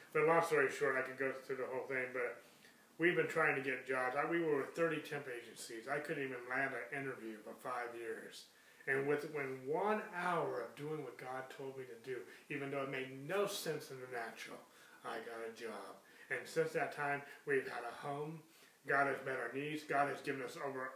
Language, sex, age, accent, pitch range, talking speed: English, male, 30-49, American, 135-160 Hz, 225 wpm